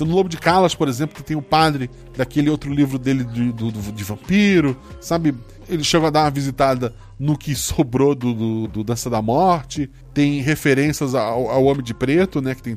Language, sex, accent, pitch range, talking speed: Portuguese, male, Brazilian, 115-155 Hz, 195 wpm